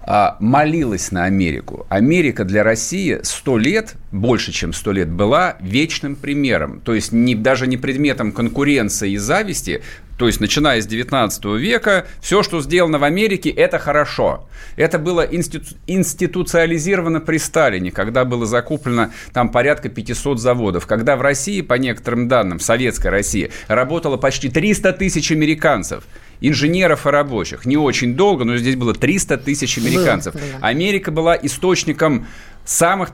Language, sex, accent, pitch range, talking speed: Russian, male, native, 120-175 Hz, 145 wpm